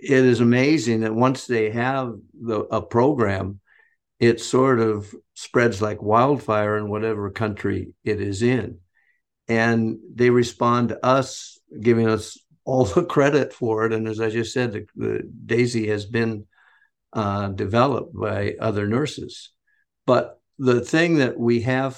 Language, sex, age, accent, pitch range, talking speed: English, male, 50-69, American, 105-120 Hz, 140 wpm